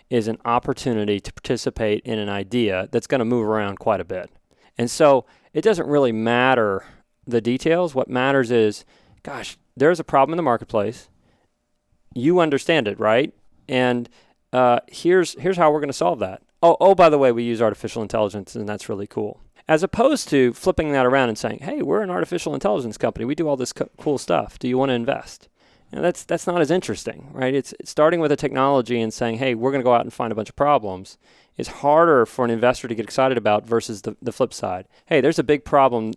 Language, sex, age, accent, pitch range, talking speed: English, male, 40-59, American, 110-140 Hz, 215 wpm